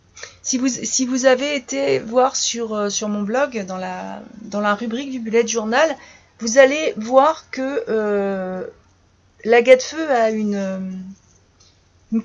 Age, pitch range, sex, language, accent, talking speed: 30-49, 195-260 Hz, female, French, French, 140 wpm